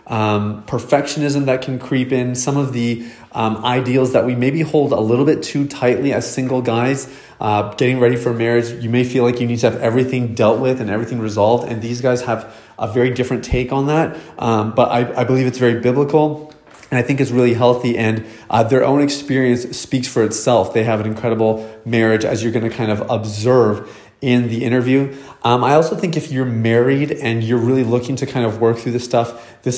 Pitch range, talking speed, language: 115-135 Hz, 215 wpm, English